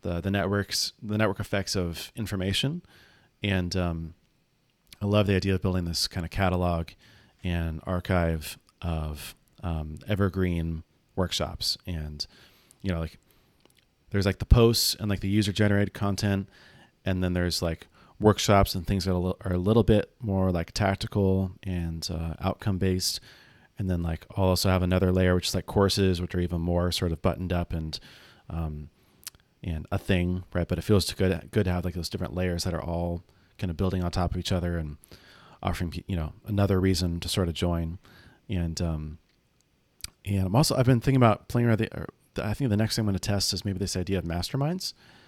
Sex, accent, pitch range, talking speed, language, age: male, American, 85-105 Hz, 195 wpm, English, 30-49